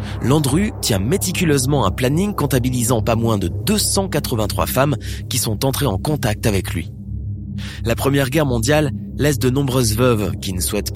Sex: male